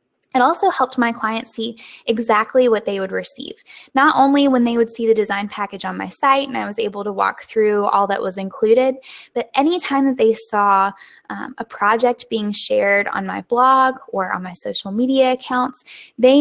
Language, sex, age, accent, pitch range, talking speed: English, female, 10-29, American, 205-260 Hz, 200 wpm